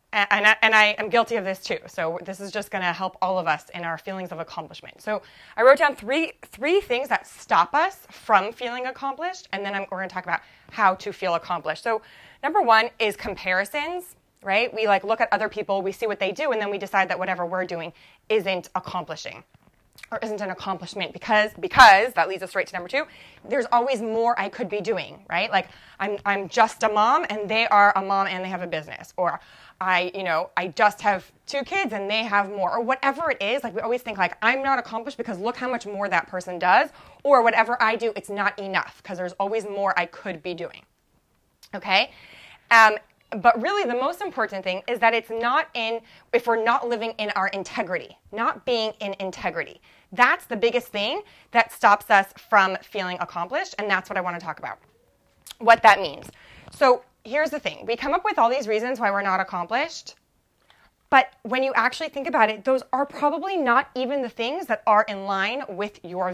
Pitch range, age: 190-240 Hz, 20-39